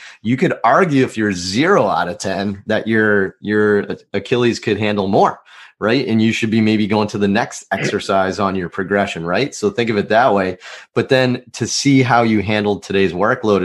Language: English